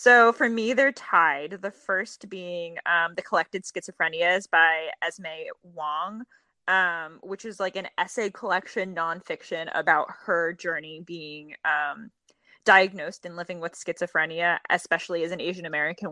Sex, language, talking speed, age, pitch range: female, English, 140 wpm, 20-39, 170-220 Hz